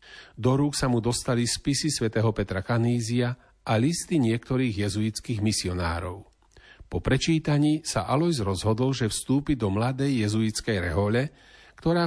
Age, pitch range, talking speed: 40-59, 105-135 Hz, 130 wpm